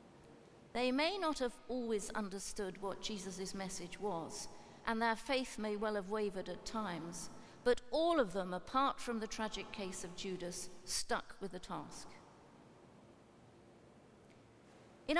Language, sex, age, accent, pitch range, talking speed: English, female, 50-69, British, 200-255 Hz, 140 wpm